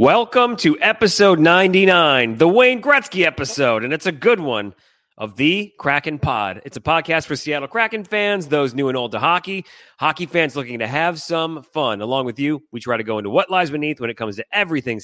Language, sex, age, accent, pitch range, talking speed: English, male, 30-49, American, 135-200 Hz, 210 wpm